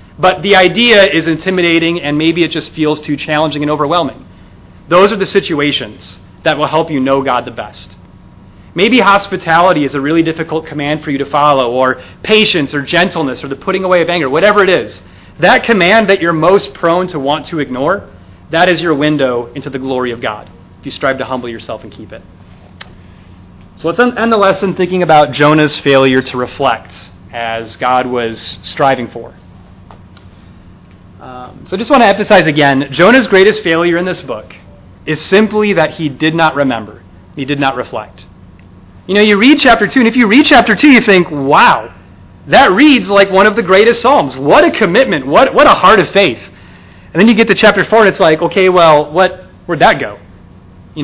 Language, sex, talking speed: English, male, 200 wpm